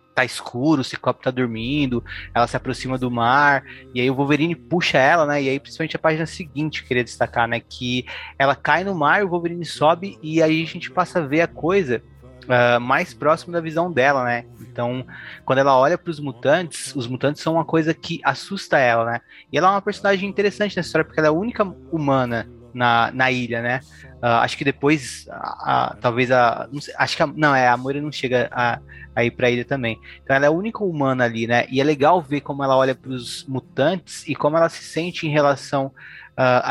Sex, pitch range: male, 125-160 Hz